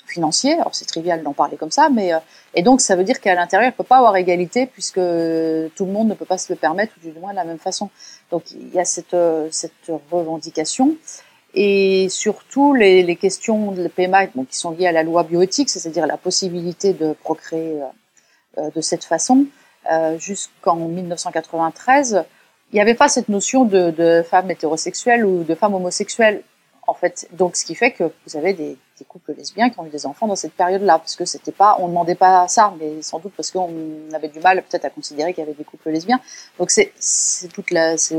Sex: female